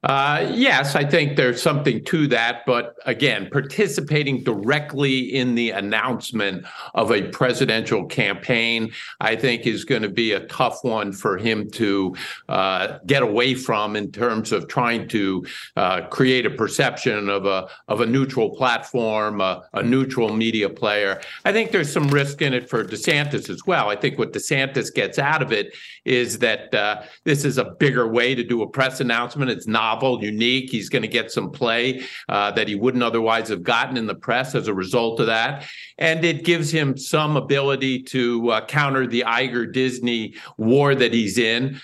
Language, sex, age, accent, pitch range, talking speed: English, male, 50-69, American, 115-135 Hz, 180 wpm